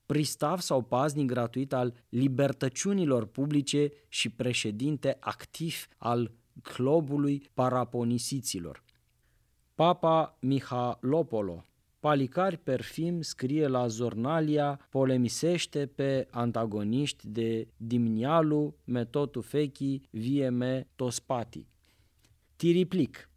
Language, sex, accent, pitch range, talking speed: English, male, Romanian, 120-145 Hz, 75 wpm